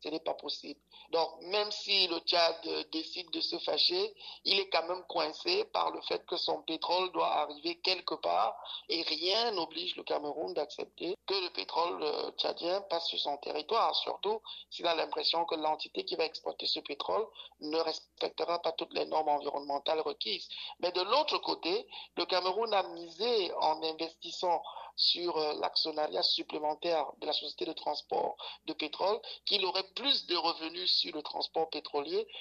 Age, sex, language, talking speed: 50-69, male, French, 165 wpm